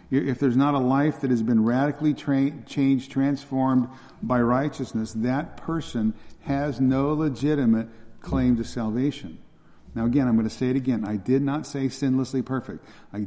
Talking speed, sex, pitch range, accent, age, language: 165 wpm, male, 115-140 Hz, American, 50-69, English